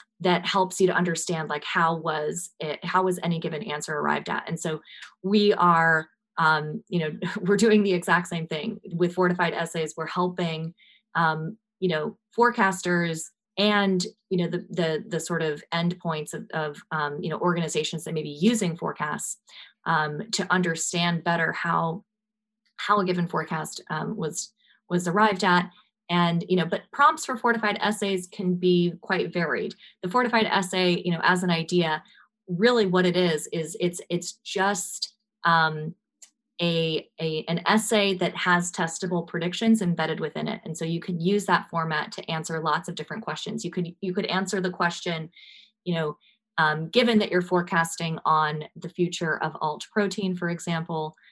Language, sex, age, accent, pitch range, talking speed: English, female, 20-39, American, 160-200 Hz, 170 wpm